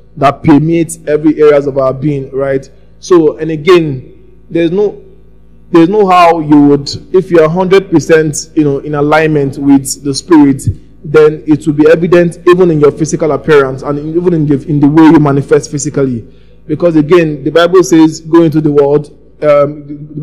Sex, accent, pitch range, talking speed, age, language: male, Nigerian, 145-165 Hz, 175 wpm, 20-39, English